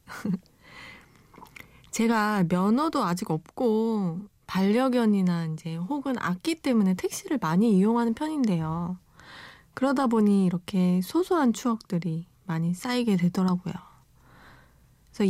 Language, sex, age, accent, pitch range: Korean, female, 20-39, native, 180-240 Hz